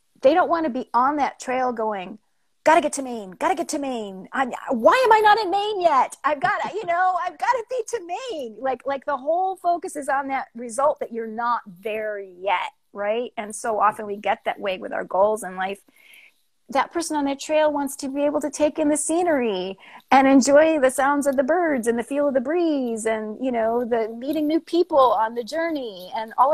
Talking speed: 235 wpm